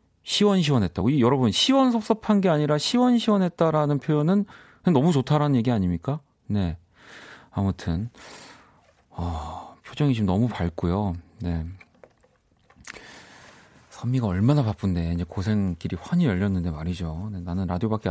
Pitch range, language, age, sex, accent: 90-150 Hz, Korean, 40-59, male, native